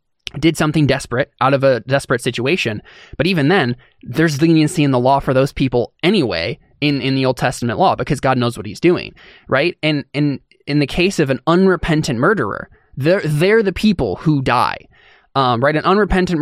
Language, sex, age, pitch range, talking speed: English, male, 20-39, 130-160 Hz, 190 wpm